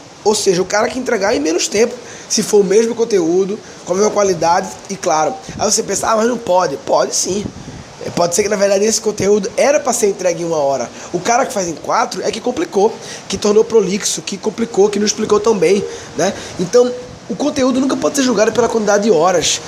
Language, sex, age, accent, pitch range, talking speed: Portuguese, male, 20-39, Brazilian, 185-230 Hz, 225 wpm